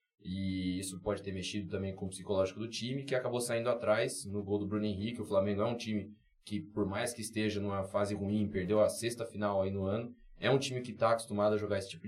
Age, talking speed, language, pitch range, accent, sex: 20-39, 250 wpm, Portuguese, 95-110 Hz, Brazilian, male